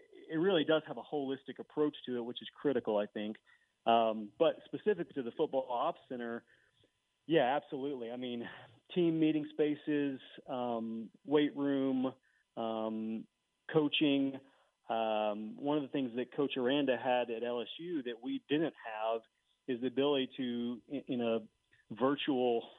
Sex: male